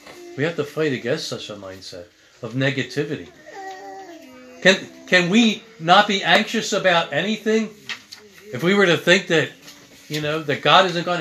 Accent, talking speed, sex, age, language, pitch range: American, 160 wpm, male, 40-59, English, 135-195 Hz